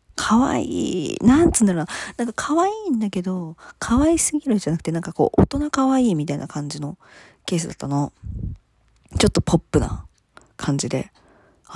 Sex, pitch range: female, 160-240 Hz